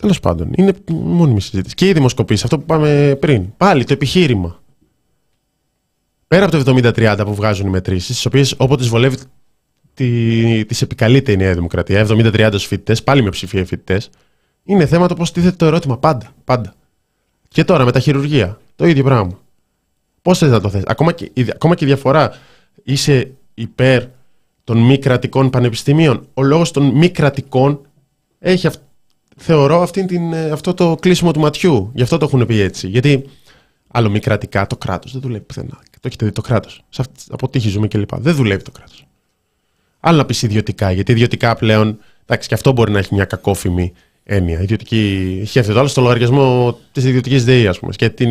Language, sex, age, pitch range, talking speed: Greek, male, 20-39, 105-140 Hz, 175 wpm